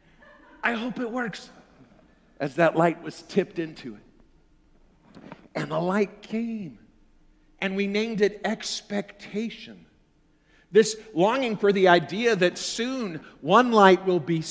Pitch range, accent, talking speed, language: 170-220 Hz, American, 130 wpm, English